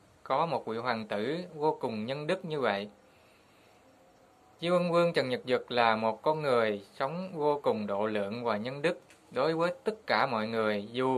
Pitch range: 110-155 Hz